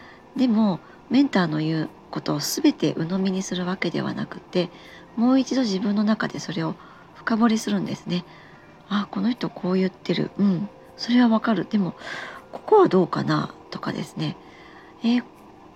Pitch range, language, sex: 175-240 Hz, Japanese, male